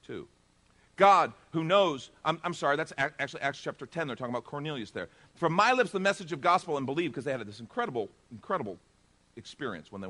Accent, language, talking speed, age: American, English, 200 wpm, 50-69